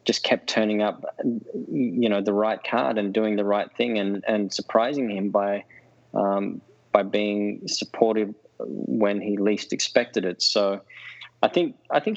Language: English